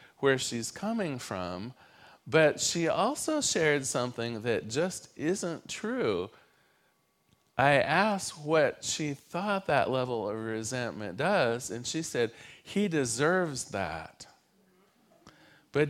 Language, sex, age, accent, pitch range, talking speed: English, male, 40-59, American, 125-185 Hz, 115 wpm